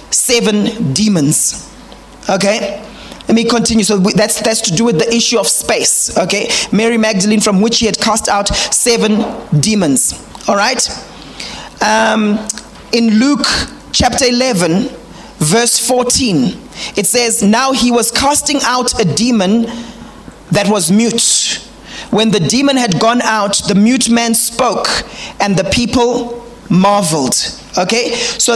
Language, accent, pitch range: English, South African, 210-245 Hz